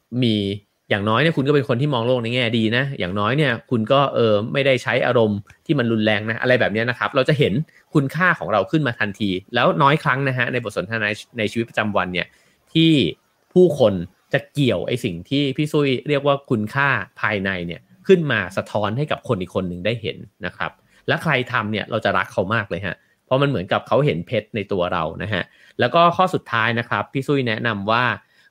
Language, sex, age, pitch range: English, male, 30-49, 105-140 Hz